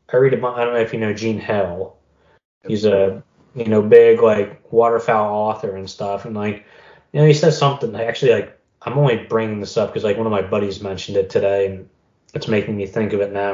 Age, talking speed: 20-39, 220 wpm